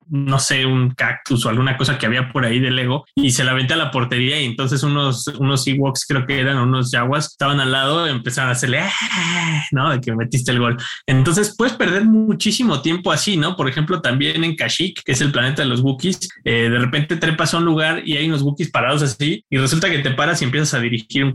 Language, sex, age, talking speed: Spanish, male, 20-39, 240 wpm